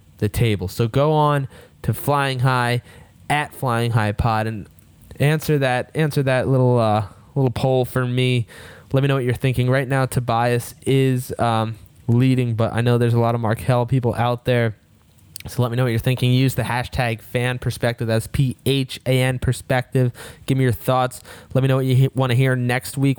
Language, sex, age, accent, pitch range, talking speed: English, male, 10-29, American, 110-130 Hz, 200 wpm